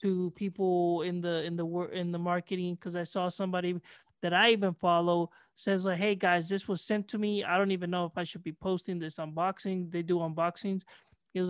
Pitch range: 175-200 Hz